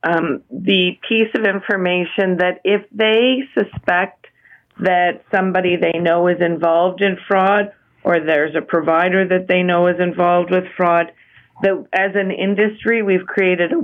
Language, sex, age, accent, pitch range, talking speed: English, female, 40-59, American, 175-195 Hz, 150 wpm